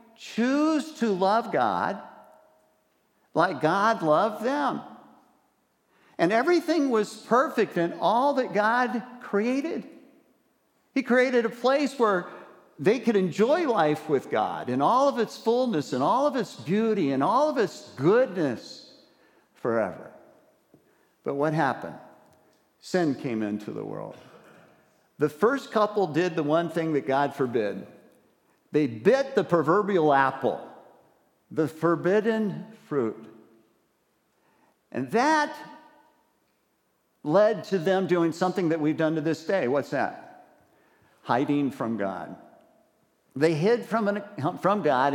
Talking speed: 125 wpm